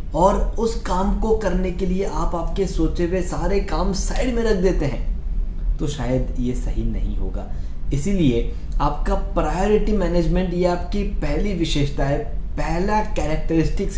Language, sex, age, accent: Hindi, male, 20-39, native